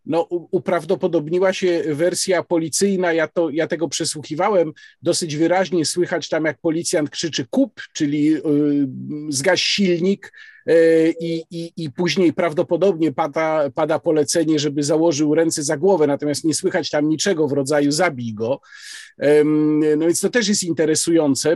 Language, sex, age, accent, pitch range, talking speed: Polish, male, 50-69, native, 155-200 Hz, 135 wpm